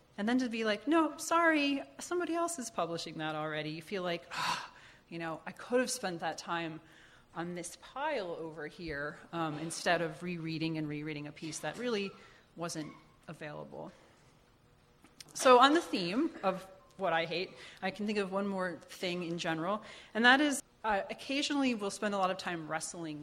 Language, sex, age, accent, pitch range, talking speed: English, female, 30-49, American, 160-215 Hz, 180 wpm